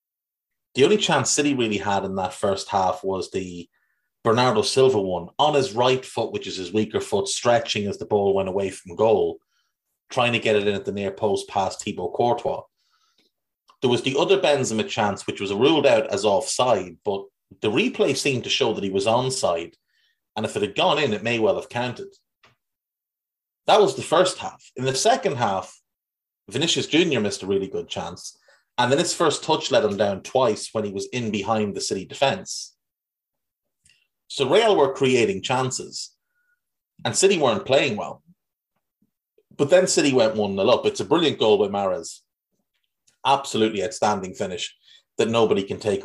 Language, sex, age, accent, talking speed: English, male, 30-49, Irish, 180 wpm